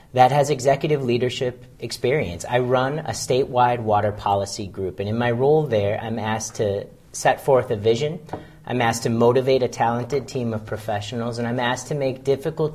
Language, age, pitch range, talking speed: English, 40-59, 110-130 Hz, 185 wpm